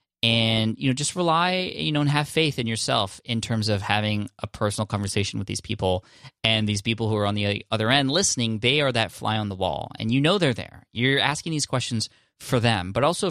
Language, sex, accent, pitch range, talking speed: English, male, American, 105-130 Hz, 235 wpm